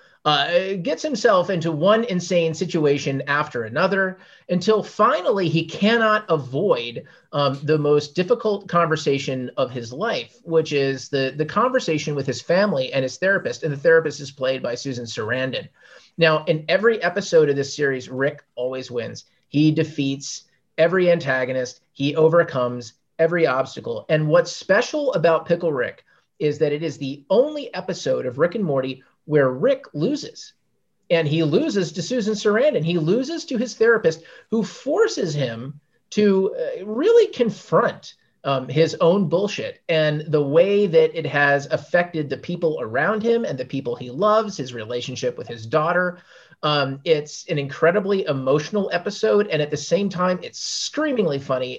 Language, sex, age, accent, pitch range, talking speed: English, male, 30-49, American, 140-195 Hz, 155 wpm